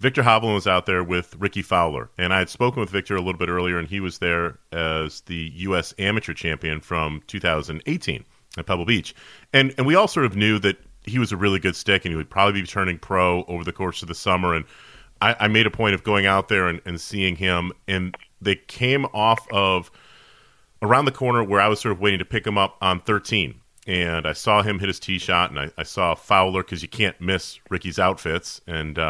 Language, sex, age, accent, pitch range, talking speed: English, male, 40-59, American, 90-110 Hz, 235 wpm